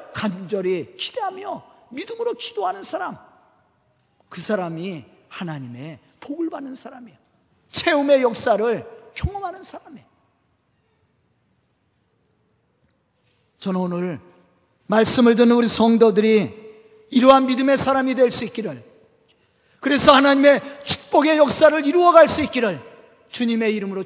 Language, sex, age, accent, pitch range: Korean, male, 40-59, native, 220-310 Hz